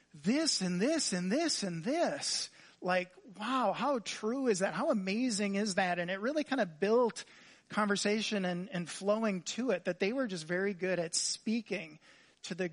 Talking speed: 185 wpm